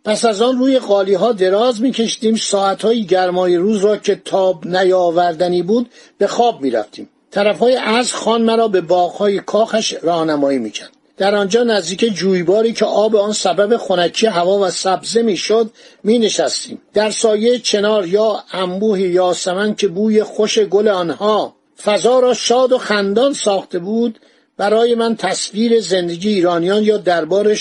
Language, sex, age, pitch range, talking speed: Persian, male, 50-69, 185-225 Hz, 160 wpm